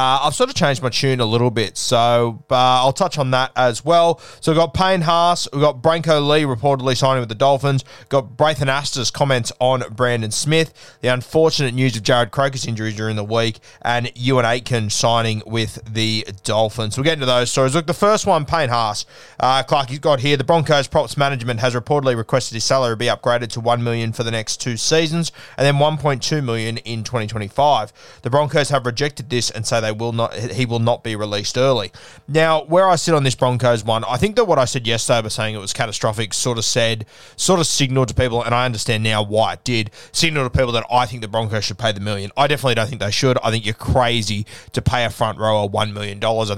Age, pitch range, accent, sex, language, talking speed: 20-39, 115-140 Hz, Australian, male, English, 230 wpm